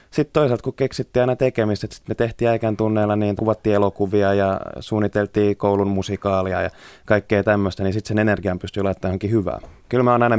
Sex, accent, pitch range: male, native, 95-115 Hz